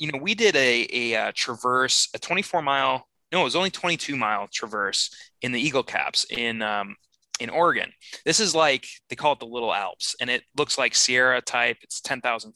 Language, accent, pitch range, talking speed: English, American, 120-160 Hz, 205 wpm